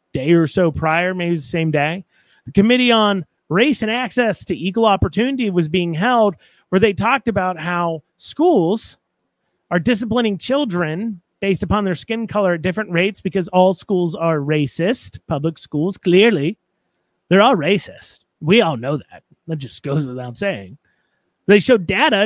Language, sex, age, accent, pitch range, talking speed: English, male, 30-49, American, 165-215 Hz, 160 wpm